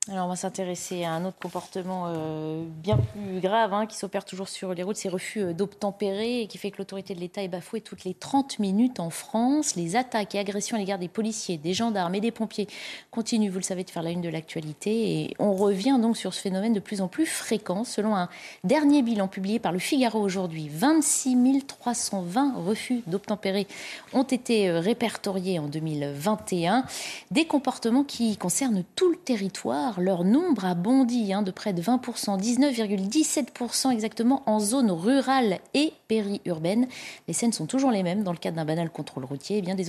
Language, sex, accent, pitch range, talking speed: French, female, French, 185-245 Hz, 195 wpm